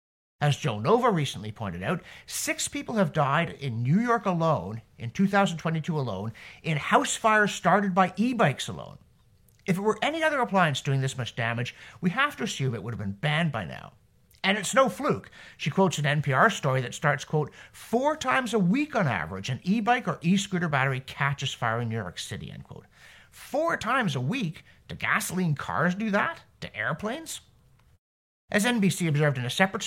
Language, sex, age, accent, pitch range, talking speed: English, male, 50-69, American, 125-195 Hz, 185 wpm